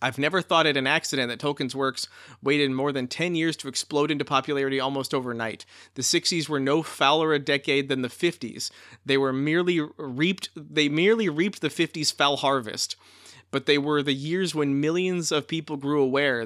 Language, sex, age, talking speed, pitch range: English, male, 30-49, 190 wpm, 130-155 Hz